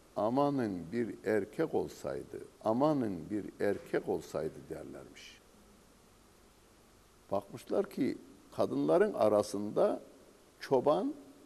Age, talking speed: 60-79, 75 wpm